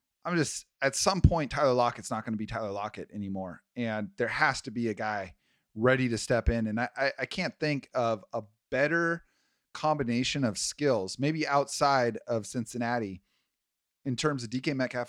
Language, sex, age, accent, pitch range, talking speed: English, male, 30-49, American, 105-130 Hz, 180 wpm